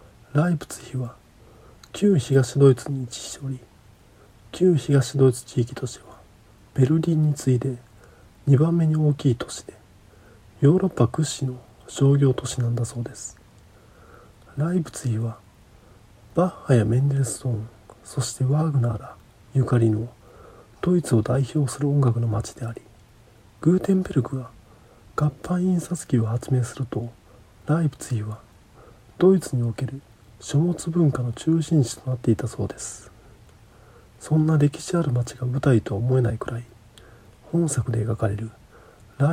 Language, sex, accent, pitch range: Japanese, male, native, 110-135 Hz